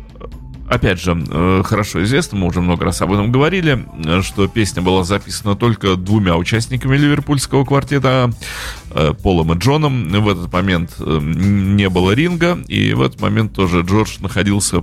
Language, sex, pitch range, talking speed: Russian, male, 90-125 Hz, 145 wpm